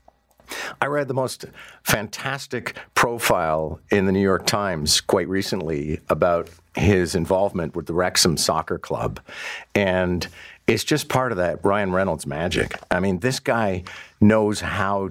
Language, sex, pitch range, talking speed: English, male, 90-110 Hz, 145 wpm